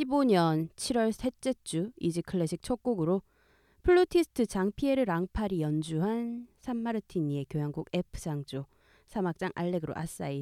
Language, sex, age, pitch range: Korean, female, 20-39, 165-245 Hz